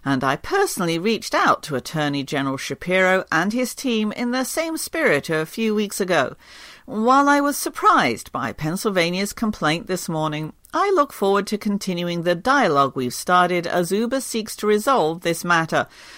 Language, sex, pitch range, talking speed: English, female, 155-235 Hz, 165 wpm